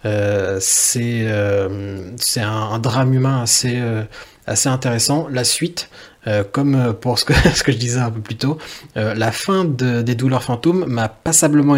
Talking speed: 190 wpm